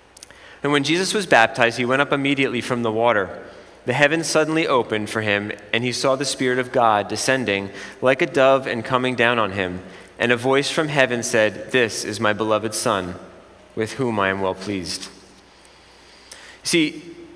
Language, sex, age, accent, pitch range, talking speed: English, male, 30-49, American, 110-140 Hz, 180 wpm